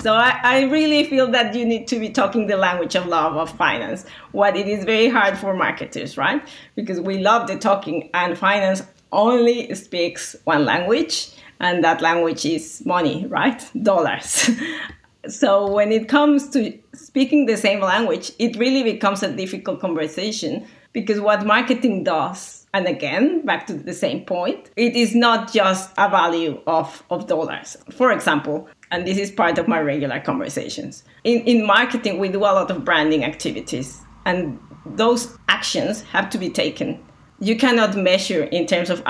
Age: 30-49